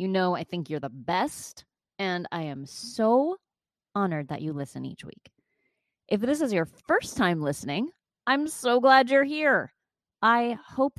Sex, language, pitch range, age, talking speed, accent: female, English, 170-230 Hz, 30-49, 170 wpm, American